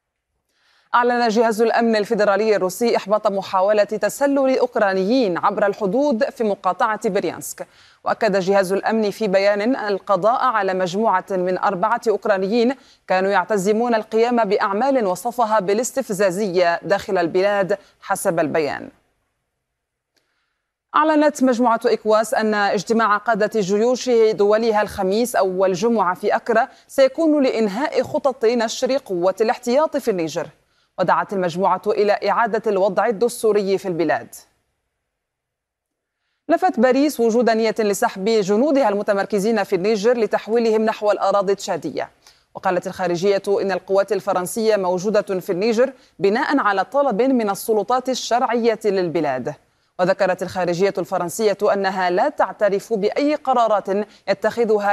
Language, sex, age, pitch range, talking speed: Arabic, female, 30-49, 195-235 Hz, 110 wpm